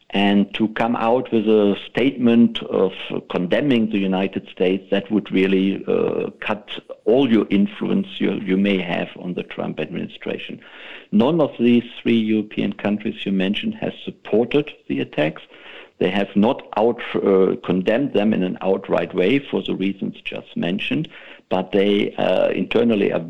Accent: German